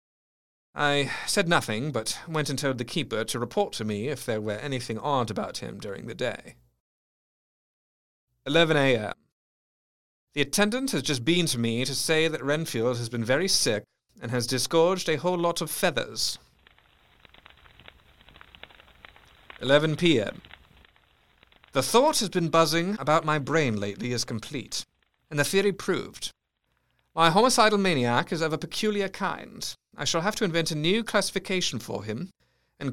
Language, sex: English, male